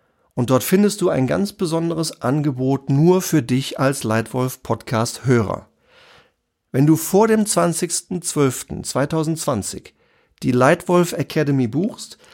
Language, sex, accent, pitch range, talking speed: German, male, German, 125-170 Hz, 105 wpm